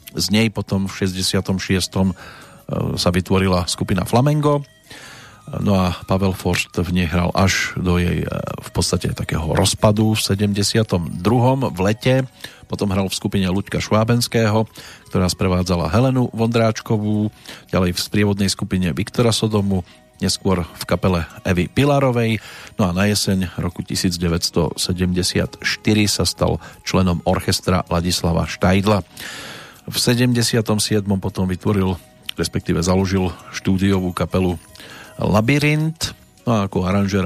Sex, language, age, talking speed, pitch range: male, Slovak, 40-59, 115 wpm, 90-110 Hz